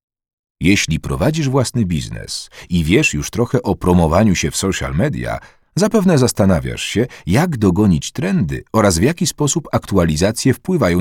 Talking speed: 140 wpm